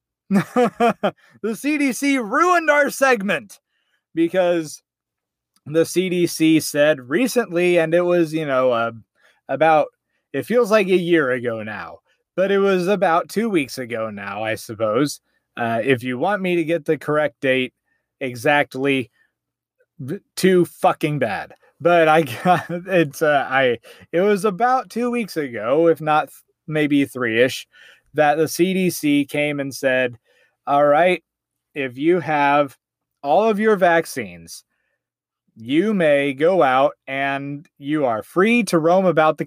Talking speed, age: 135 wpm, 30-49